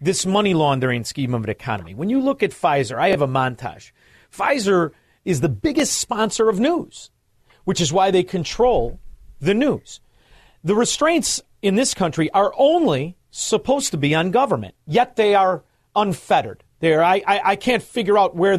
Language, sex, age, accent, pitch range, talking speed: English, male, 40-59, American, 145-210 Hz, 180 wpm